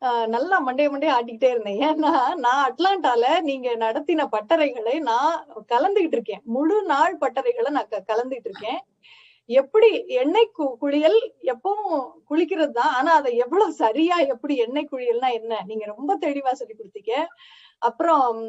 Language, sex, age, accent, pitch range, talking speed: Tamil, female, 30-49, native, 260-380 Hz, 135 wpm